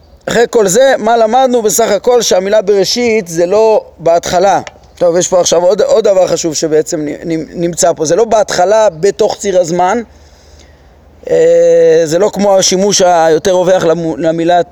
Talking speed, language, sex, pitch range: 145 wpm, Hebrew, male, 160-210 Hz